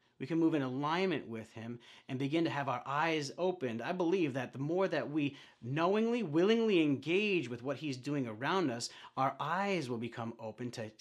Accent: American